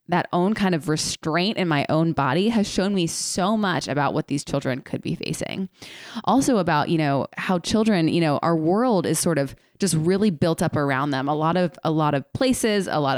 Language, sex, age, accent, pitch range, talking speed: English, female, 20-39, American, 155-215 Hz, 225 wpm